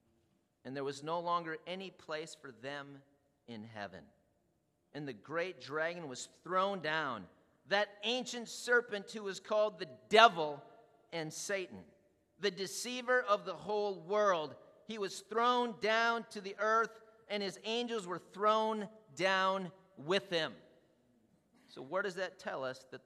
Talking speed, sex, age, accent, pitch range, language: 145 wpm, male, 40-59, American, 165-215 Hz, English